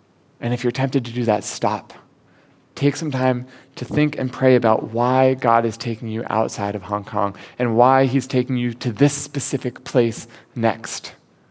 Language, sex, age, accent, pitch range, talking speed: English, male, 20-39, American, 115-145 Hz, 180 wpm